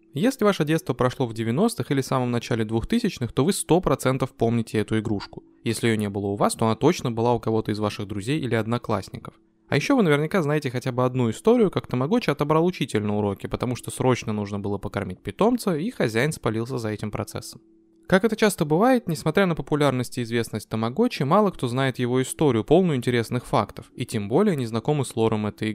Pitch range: 110-155 Hz